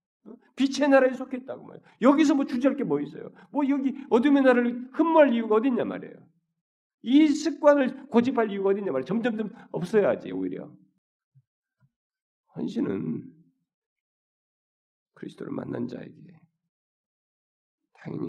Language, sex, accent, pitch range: Korean, male, native, 145-215 Hz